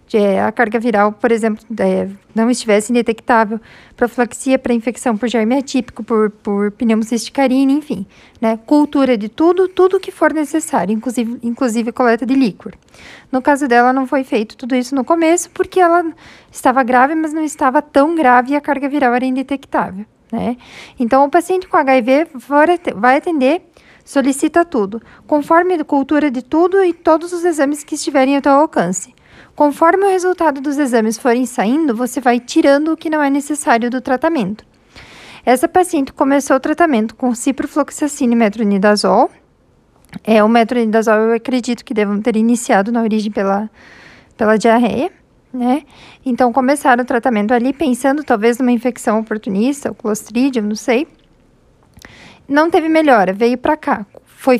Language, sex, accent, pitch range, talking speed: Portuguese, female, Brazilian, 230-295 Hz, 160 wpm